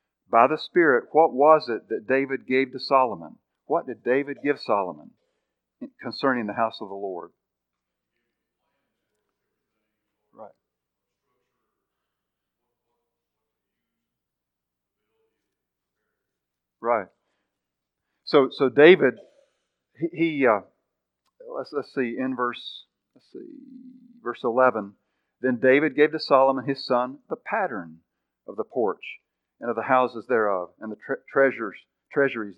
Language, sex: English, male